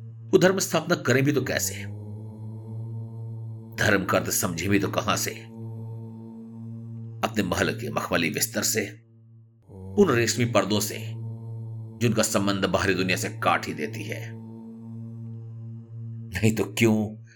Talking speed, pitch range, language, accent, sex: 120 wpm, 105-115 Hz, Hindi, native, male